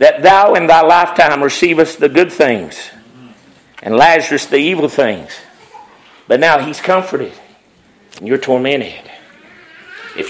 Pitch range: 170-215 Hz